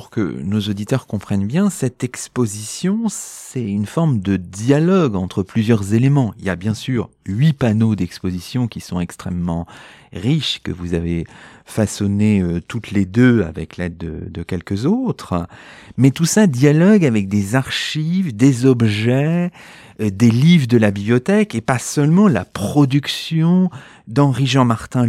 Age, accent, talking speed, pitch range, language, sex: 40-59, French, 155 wpm, 95-145 Hz, French, male